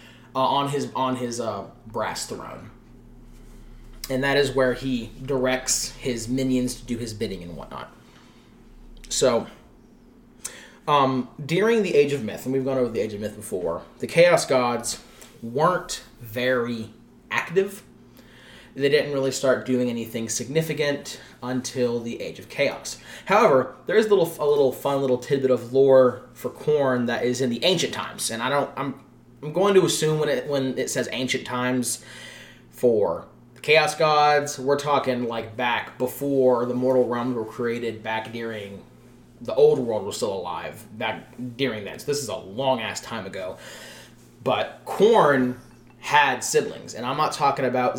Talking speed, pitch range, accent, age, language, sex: 165 wpm, 120-140 Hz, American, 20-39, English, male